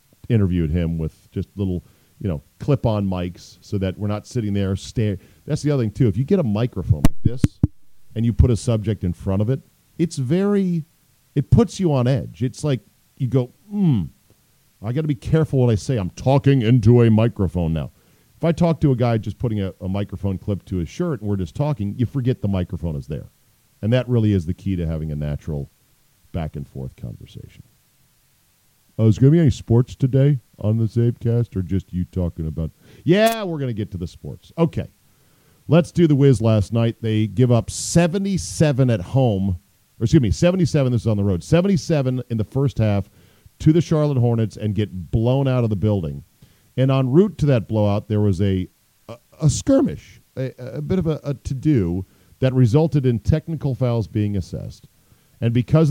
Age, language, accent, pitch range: 40-59, English, American, 100-140 Hz